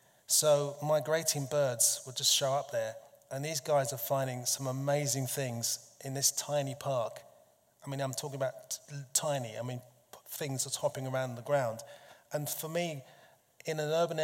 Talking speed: 170 wpm